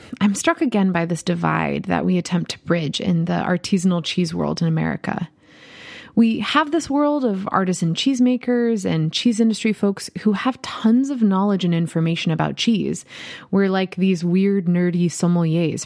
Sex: female